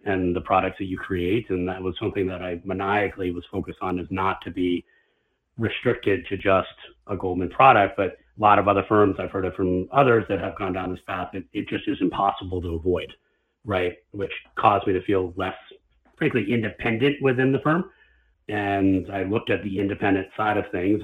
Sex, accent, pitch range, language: male, American, 95-110 Hz, English